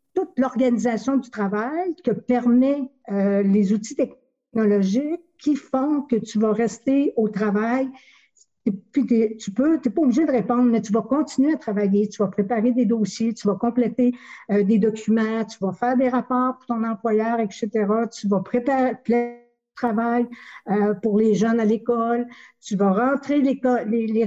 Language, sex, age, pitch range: French, female, 60-79, 215-255 Hz